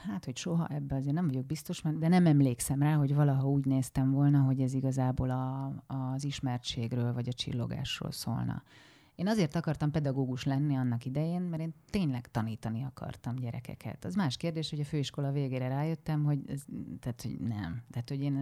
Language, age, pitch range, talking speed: Hungarian, 30-49, 130-150 Hz, 185 wpm